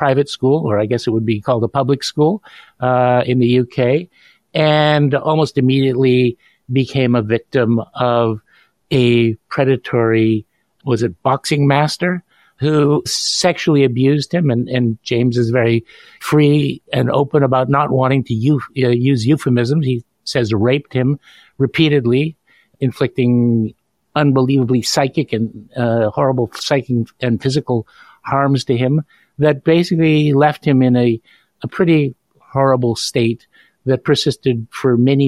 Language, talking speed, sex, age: English, 135 wpm, male, 50-69